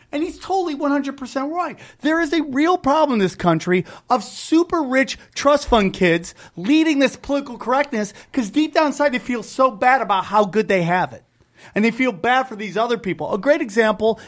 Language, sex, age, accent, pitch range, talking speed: English, male, 30-49, American, 195-270 Hz, 200 wpm